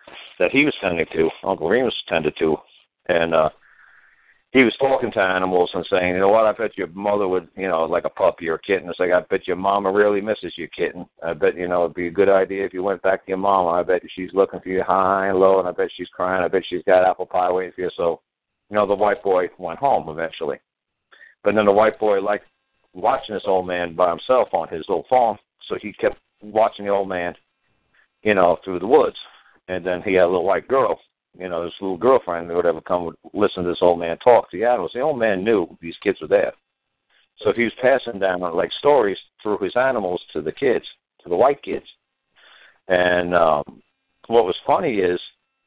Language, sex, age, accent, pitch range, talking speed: English, male, 60-79, American, 90-100 Hz, 235 wpm